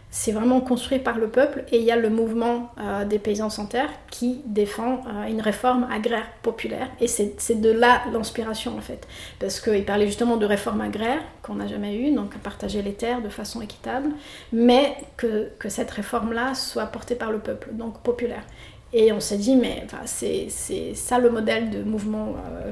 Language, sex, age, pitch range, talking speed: French, female, 30-49, 215-245 Hz, 205 wpm